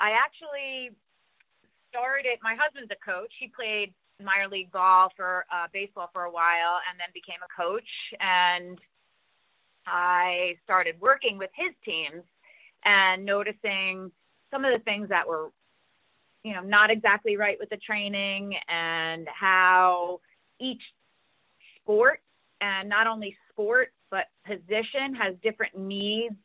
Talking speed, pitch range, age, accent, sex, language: 135 wpm, 180-215 Hz, 30-49, American, female, English